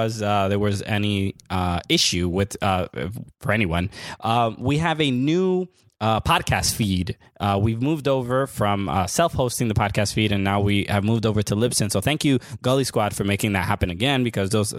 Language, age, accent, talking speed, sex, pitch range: English, 20-39, American, 195 wpm, male, 105-135 Hz